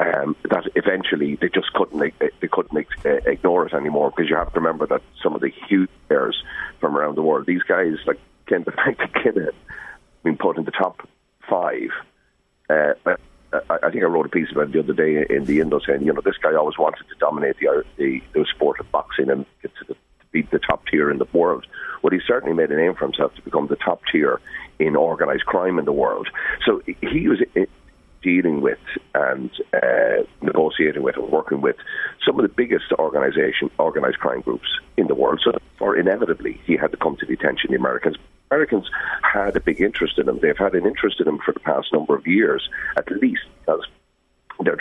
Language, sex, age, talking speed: English, male, 40-59, 215 wpm